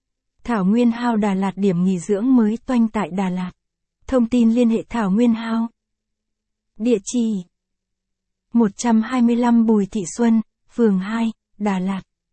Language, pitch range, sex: Vietnamese, 195-235 Hz, female